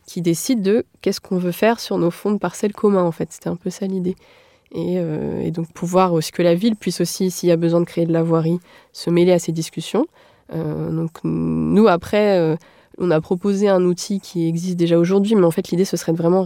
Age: 20-39